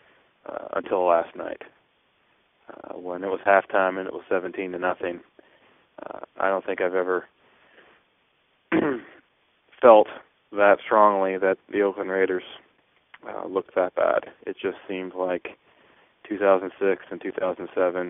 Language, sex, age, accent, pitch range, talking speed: English, male, 20-39, American, 90-100 Hz, 130 wpm